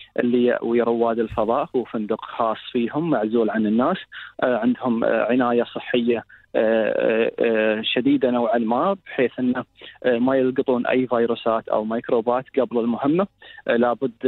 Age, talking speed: 20-39, 115 wpm